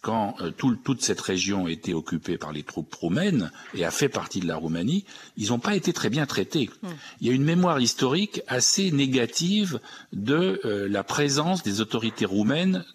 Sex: male